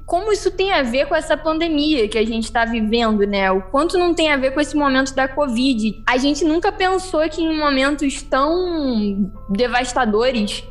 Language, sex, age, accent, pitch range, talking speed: Portuguese, female, 10-29, Brazilian, 235-290 Hz, 190 wpm